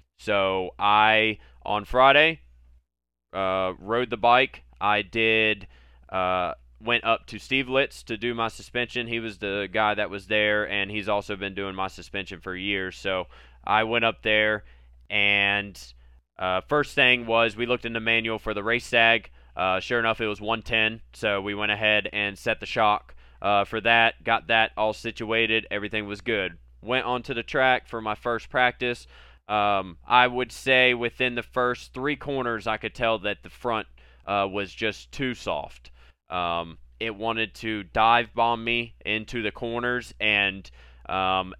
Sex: male